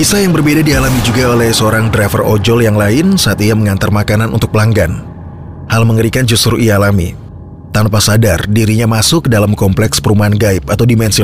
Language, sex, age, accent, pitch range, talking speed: Indonesian, male, 30-49, native, 105-130 Hz, 175 wpm